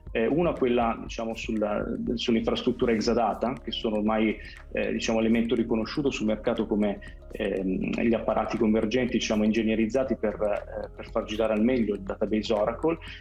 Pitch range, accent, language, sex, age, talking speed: 105-120 Hz, native, Italian, male, 30-49, 145 wpm